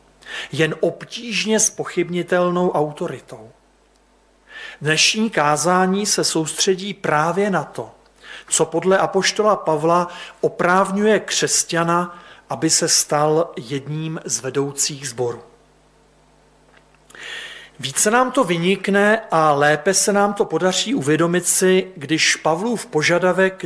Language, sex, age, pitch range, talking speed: Slovak, male, 40-59, 155-200 Hz, 100 wpm